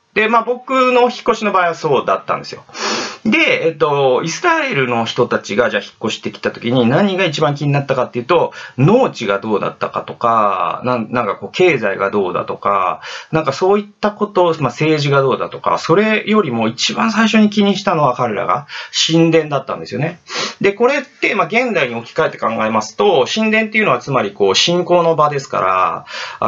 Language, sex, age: Japanese, male, 30-49